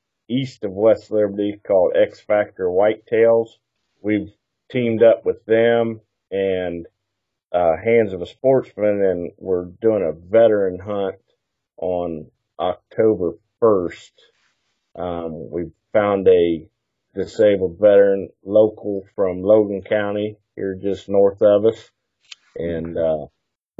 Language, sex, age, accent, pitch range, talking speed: English, male, 40-59, American, 90-115 Hz, 110 wpm